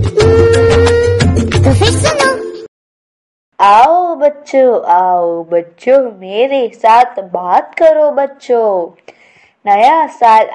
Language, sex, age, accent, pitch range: Gujarati, female, 20-39, native, 180-260 Hz